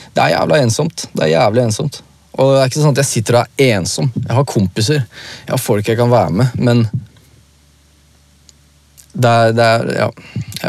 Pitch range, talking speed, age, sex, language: 90-115 Hz, 200 wpm, 20-39, male, English